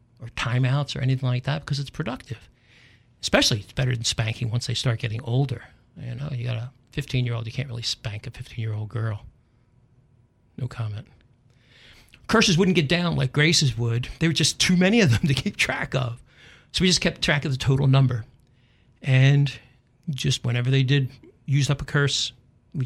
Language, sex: English, male